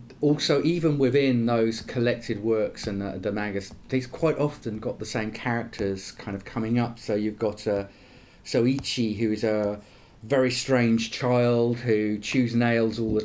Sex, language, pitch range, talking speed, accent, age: male, English, 105-130 Hz, 170 wpm, British, 40-59